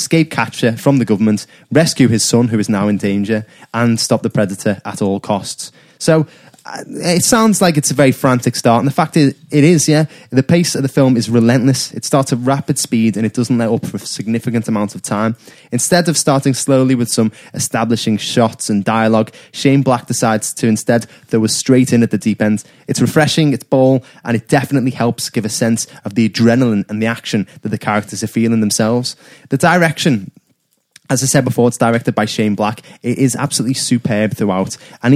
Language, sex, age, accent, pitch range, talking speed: English, male, 20-39, British, 110-135 Hz, 210 wpm